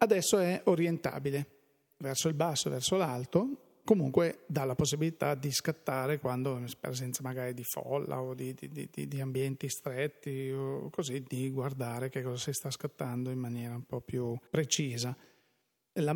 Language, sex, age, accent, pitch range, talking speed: Italian, male, 40-59, native, 130-160 Hz, 160 wpm